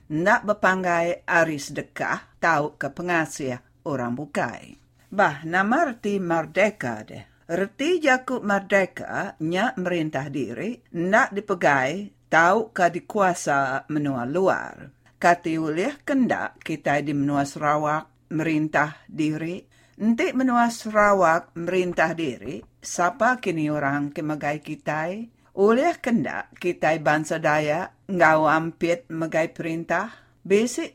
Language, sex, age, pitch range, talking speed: English, female, 50-69, 155-200 Hz, 105 wpm